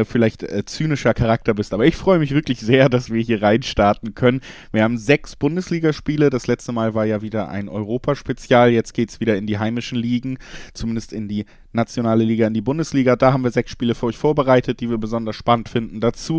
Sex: male